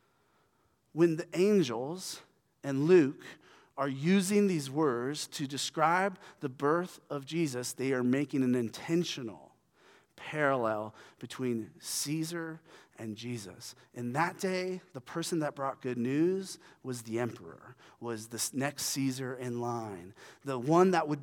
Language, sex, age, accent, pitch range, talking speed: English, male, 30-49, American, 125-160 Hz, 135 wpm